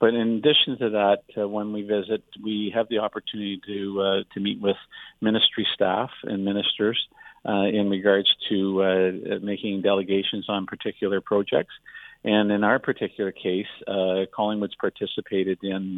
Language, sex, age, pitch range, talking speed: English, male, 50-69, 95-105 Hz, 155 wpm